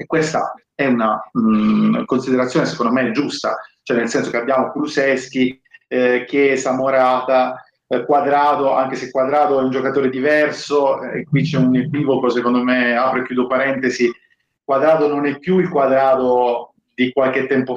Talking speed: 160 wpm